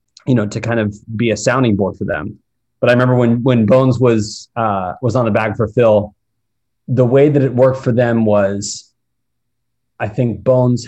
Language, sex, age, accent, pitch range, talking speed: English, male, 30-49, American, 105-120 Hz, 200 wpm